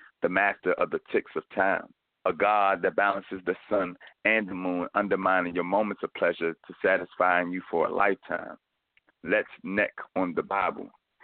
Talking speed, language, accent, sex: 170 wpm, English, American, male